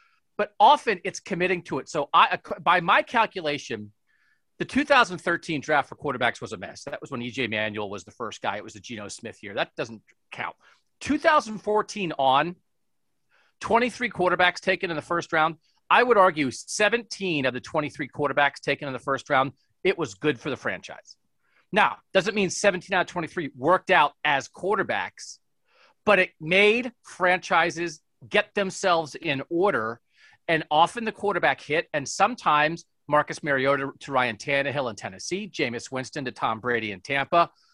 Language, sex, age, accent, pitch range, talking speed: English, male, 40-59, American, 145-200 Hz, 165 wpm